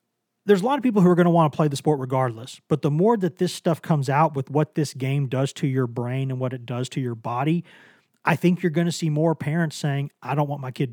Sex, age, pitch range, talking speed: male, 40-59, 130-160 Hz, 285 wpm